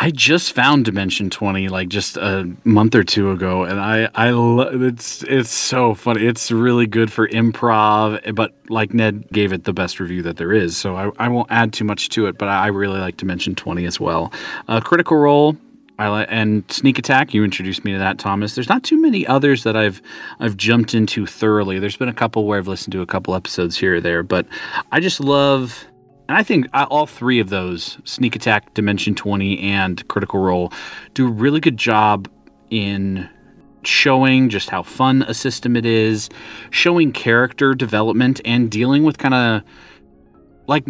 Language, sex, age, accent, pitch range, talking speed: English, male, 30-49, American, 100-130 Hz, 195 wpm